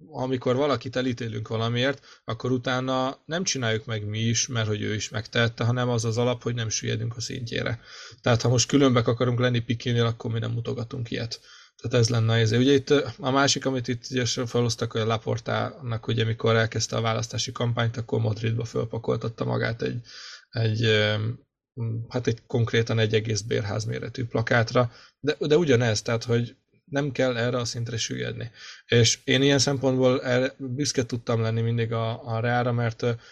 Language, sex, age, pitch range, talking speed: Hungarian, male, 20-39, 115-125 Hz, 170 wpm